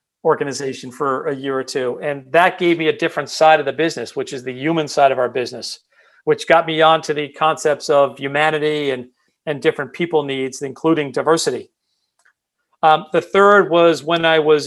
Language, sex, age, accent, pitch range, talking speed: English, male, 40-59, American, 145-165 Hz, 190 wpm